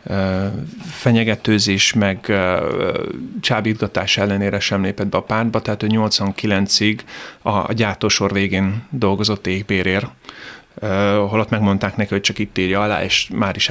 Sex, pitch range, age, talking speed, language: male, 100-120 Hz, 30-49, 125 wpm, Hungarian